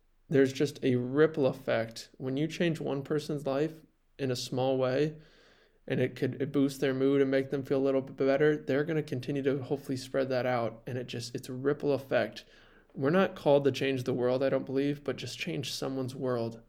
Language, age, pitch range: English, 20-39, 125-140 Hz